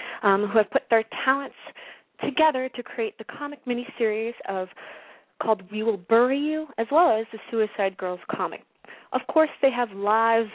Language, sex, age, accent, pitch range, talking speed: English, female, 30-49, American, 205-260 Hz, 165 wpm